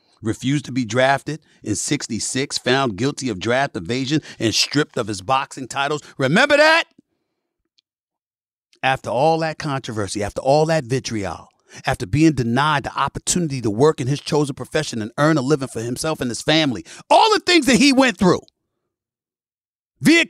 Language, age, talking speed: English, 40-59, 165 wpm